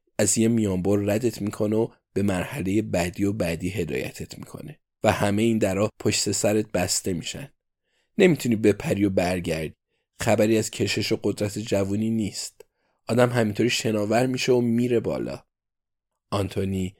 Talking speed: 140 wpm